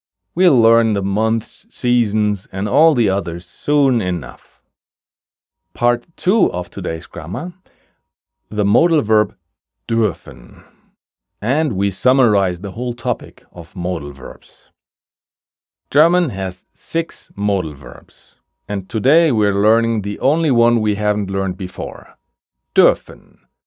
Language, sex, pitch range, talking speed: German, male, 90-120 Hz, 115 wpm